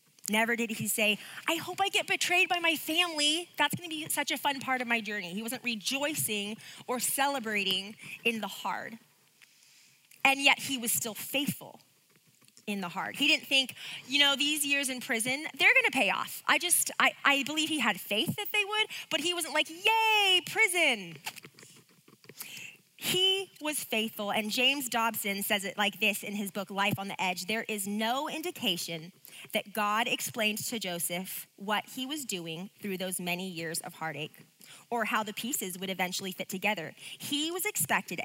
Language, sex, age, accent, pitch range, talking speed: English, female, 20-39, American, 195-280 Hz, 180 wpm